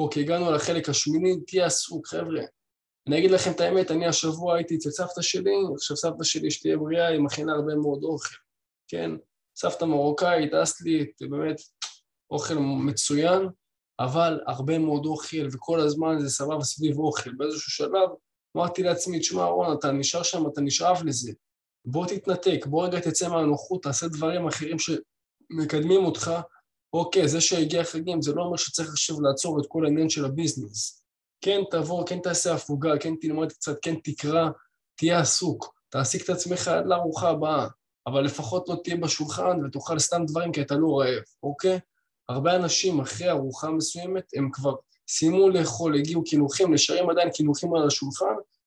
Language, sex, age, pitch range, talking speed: Hebrew, male, 20-39, 150-175 Hz, 165 wpm